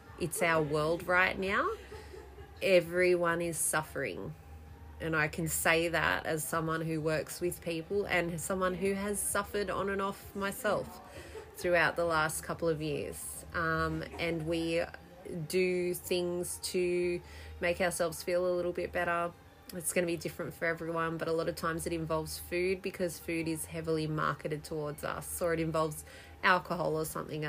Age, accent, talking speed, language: 20-39, Australian, 160 wpm, English